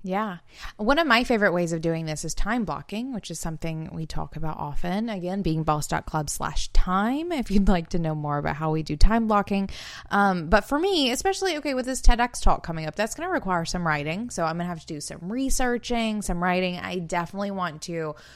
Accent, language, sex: American, English, female